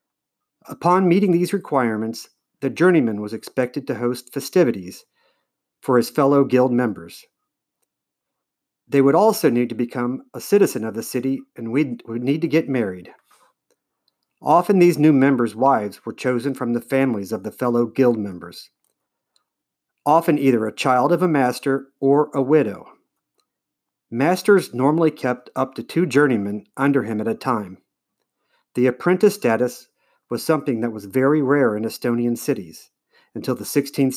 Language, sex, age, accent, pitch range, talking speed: English, male, 50-69, American, 120-150 Hz, 150 wpm